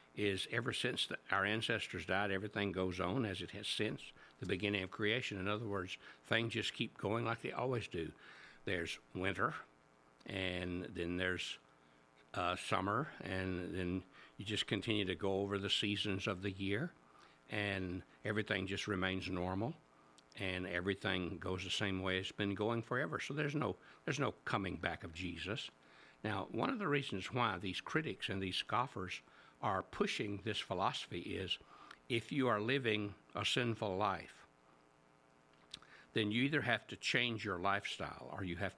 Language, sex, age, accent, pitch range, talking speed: English, male, 60-79, American, 90-105 Hz, 160 wpm